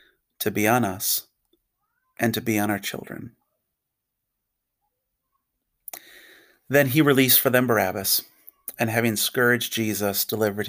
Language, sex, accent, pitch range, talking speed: English, male, American, 105-120 Hz, 120 wpm